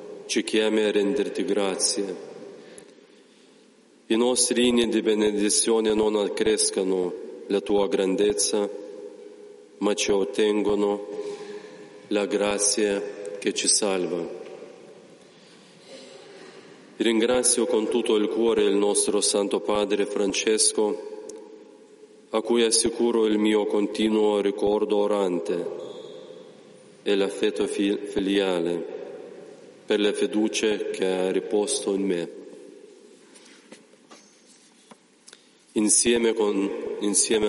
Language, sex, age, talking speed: Italian, male, 40-59, 90 wpm